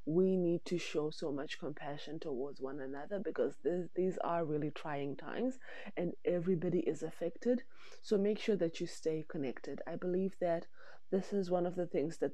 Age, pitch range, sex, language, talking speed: 20-39, 145-175 Hz, female, English, 180 wpm